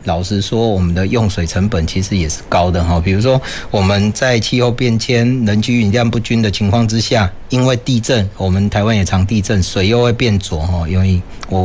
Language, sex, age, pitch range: Chinese, male, 40-59, 90-110 Hz